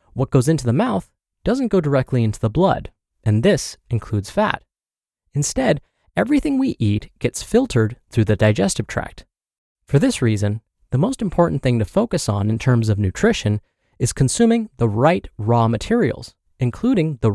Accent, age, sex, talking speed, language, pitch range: American, 20-39, male, 165 wpm, English, 110-160 Hz